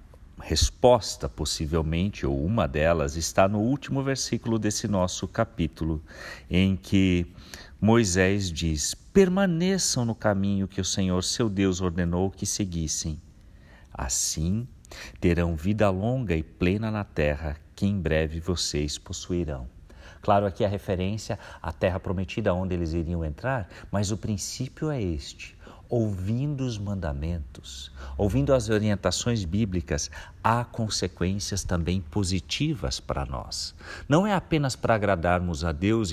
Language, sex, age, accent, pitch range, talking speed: Portuguese, male, 50-69, Brazilian, 80-105 Hz, 125 wpm